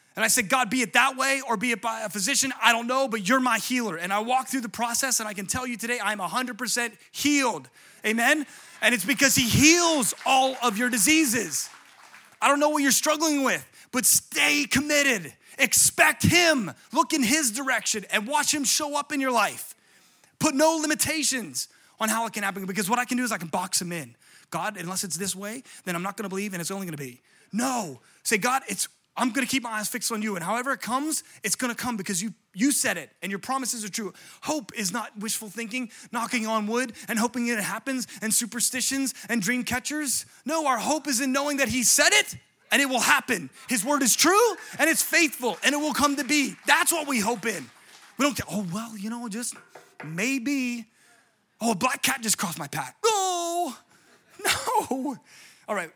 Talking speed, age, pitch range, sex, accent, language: 220 wpm, 30-49, 215-275 Hz, male, American, English